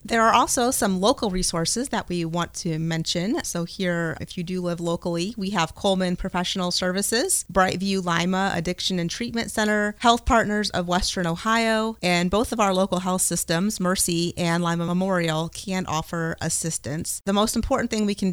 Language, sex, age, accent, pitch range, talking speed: English, female, 30-49, American, 175-200 Hz, 175 wpm